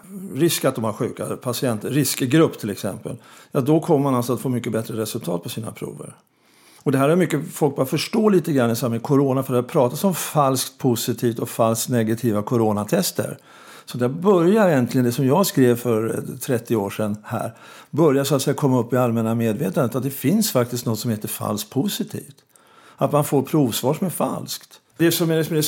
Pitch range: 120-150 Hz